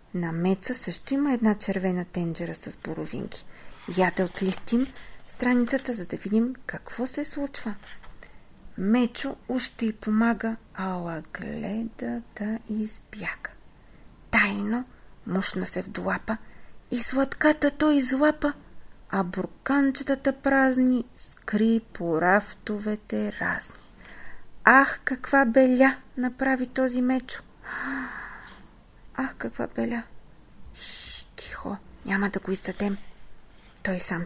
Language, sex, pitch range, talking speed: Bulgarian, female, 190-255 Hz, 105 wpm